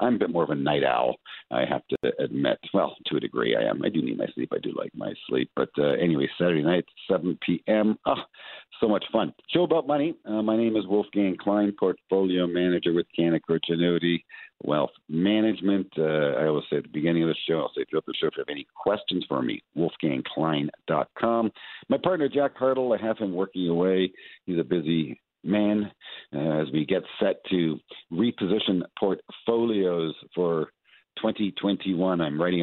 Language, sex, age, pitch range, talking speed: English, male, 60-79, 85-115 Hz, 190 wpm